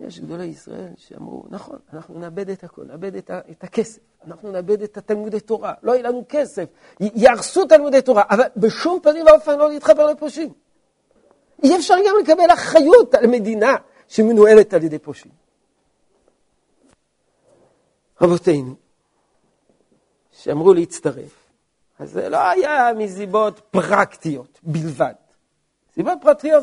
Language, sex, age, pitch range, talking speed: Hebrew, male, 50-69, 165-275 Hz, 125 wpm